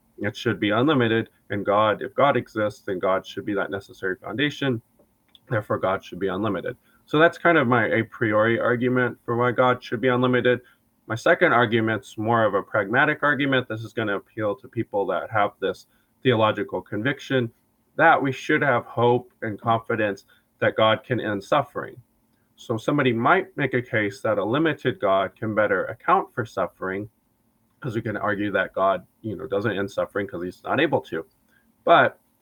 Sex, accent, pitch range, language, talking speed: male, American, 110-130 Hz, English, 185 wpm